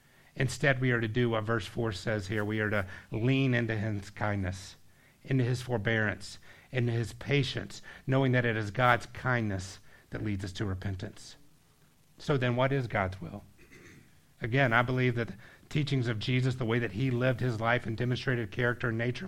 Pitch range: 110-135 Hz